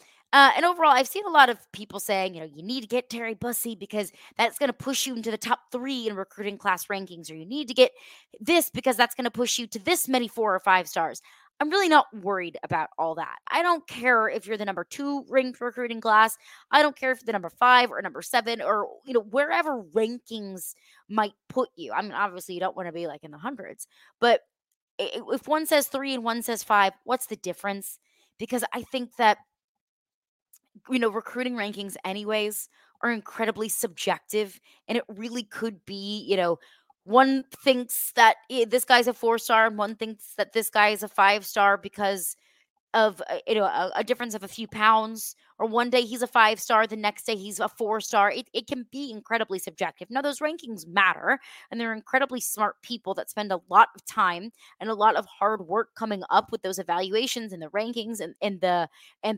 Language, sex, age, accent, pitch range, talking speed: English, female, 20-39, American, 205-255 Hz, 210 wpm